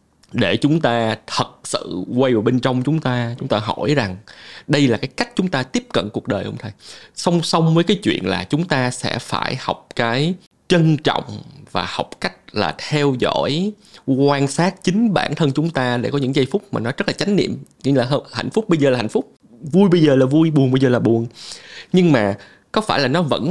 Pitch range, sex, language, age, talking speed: 125-165 Hz, male, Vietnamese, 20-39, 230 wpm